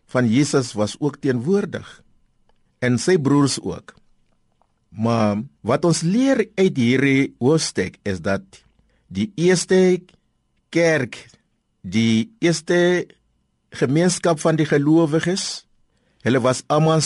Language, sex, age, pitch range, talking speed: Dutch, male, 60-79, 110-170 Hz, 100 wpm